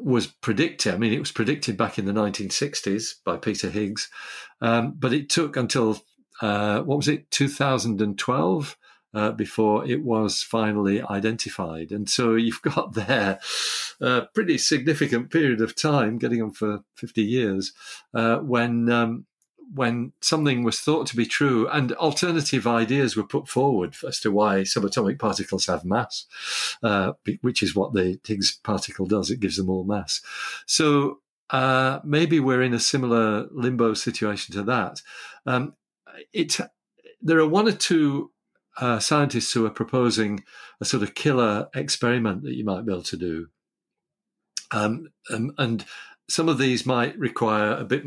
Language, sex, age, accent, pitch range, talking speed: English, male, 50-69, British, 105-135 Hz, 155 wpm